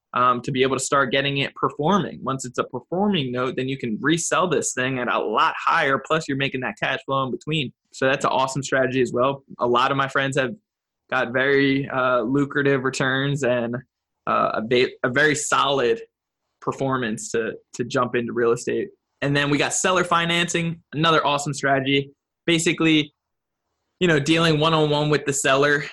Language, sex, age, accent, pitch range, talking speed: English, male, 20-39, American, 125-140 Hz, 185 wpm